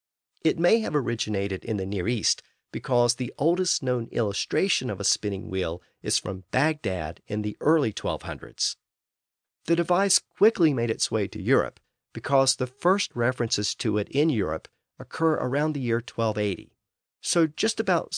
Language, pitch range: English, 95-135 Hz